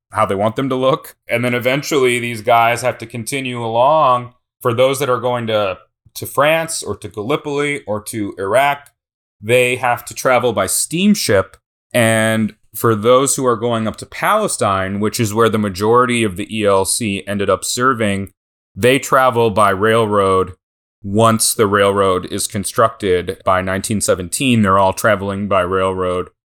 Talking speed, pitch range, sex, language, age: 160 wpm, 100-125 Hz, male, English, 30-49